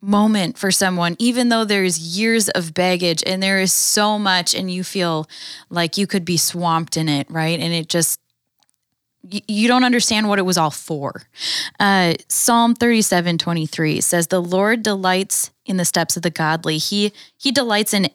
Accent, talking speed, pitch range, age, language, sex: American, 175 wpm, 170-205 Hz, 10-29, English, female